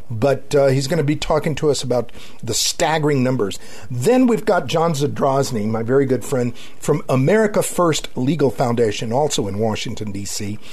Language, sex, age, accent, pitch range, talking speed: English, male, 50-69, American, 120-155 Hz, 175 wpm